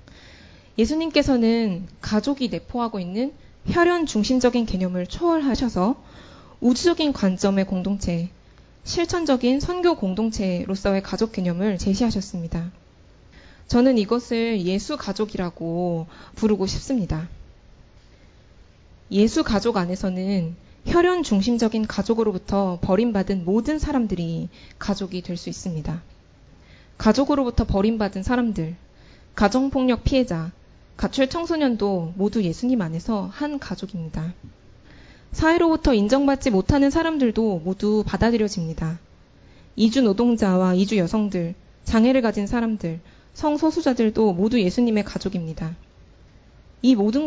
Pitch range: 175-250 Hz